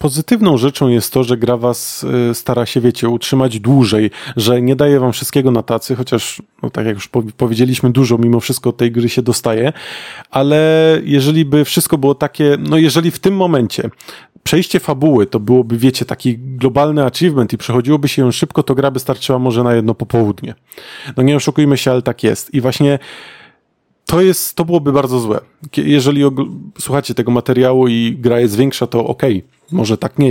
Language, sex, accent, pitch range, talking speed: Polish, male, native, 120-145 Hz, 180 wpm